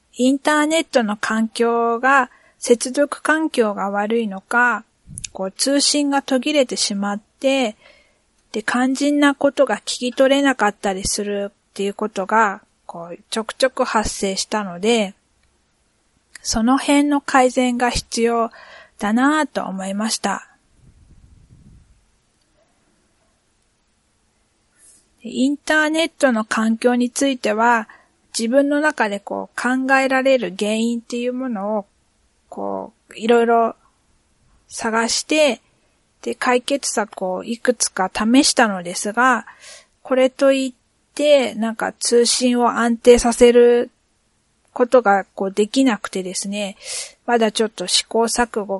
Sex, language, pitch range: female, Japanese, 205-265 Hz